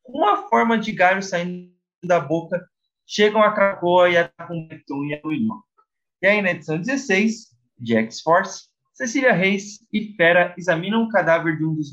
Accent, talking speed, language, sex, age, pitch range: Brazilian, 160 wpm, Portuguese, male, 20-39, 155-215 Hz